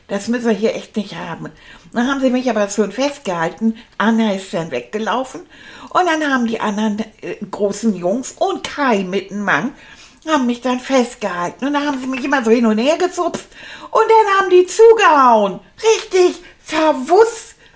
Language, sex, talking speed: German, female, 180 wpm